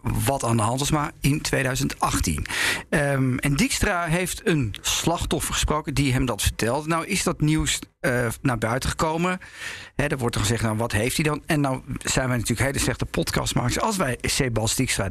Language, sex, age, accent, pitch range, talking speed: Dutch, male, 50-69, Dutch, 120-165 Hz, 195 wpm